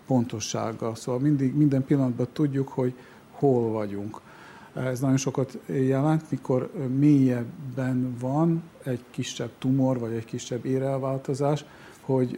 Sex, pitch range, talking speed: male, 120-140 Hz, 105 wpm